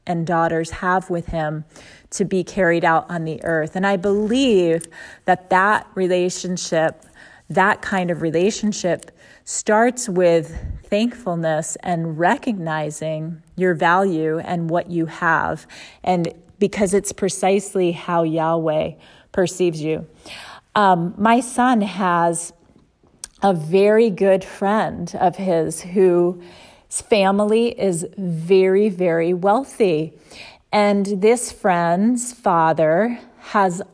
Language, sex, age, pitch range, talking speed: English, female, 30-49, 170-205 Hz, 110 wpm